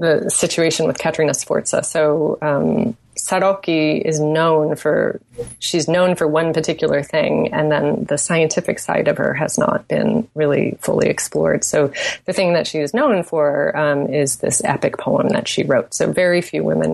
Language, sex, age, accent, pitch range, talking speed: English, female, 30-49, American, 145-170 Hz, 175 wpm